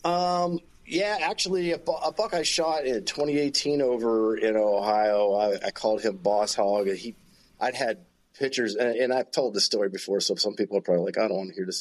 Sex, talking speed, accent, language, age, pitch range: male, 215 wpm, American, English, 40-59, 105-135 Hz